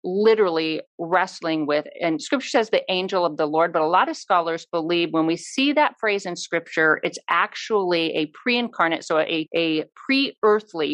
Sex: female